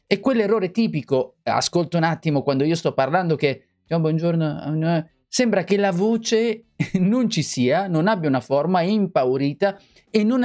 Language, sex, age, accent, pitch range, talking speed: Italian, male, 30-49, native, 120-180 Hz, 170 wpm